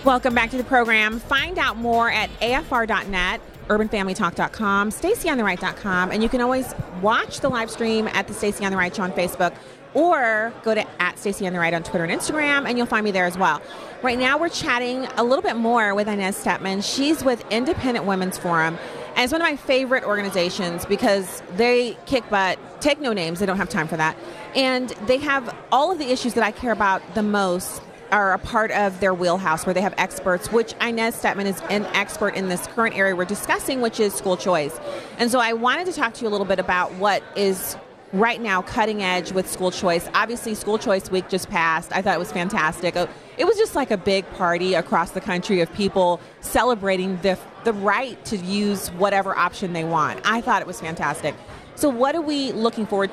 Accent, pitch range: American, 185-235 Hz